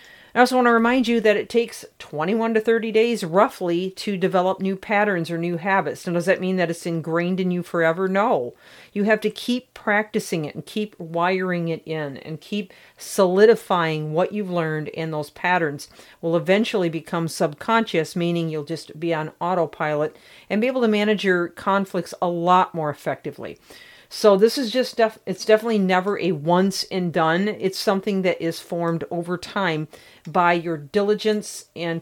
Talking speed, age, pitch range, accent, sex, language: 180 wpm, 40-59, 165-205 Hz, American, female, English